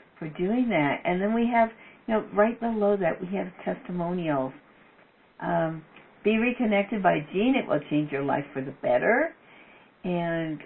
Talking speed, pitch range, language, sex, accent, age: 160 wpm, 155-205 Hz, English, female, American, 60-79